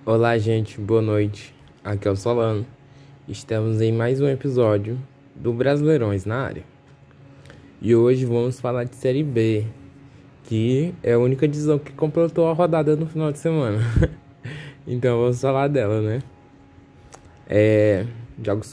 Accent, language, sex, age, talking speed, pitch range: Brazilian, Portuguese, male, 10-29, 140 wpm, 115-140 Hz